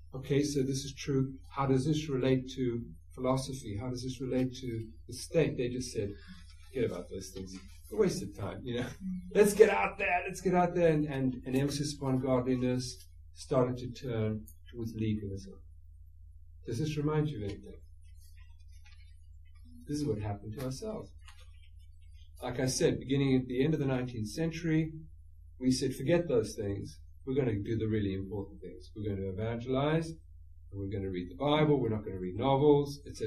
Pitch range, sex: 85-140 Hz, male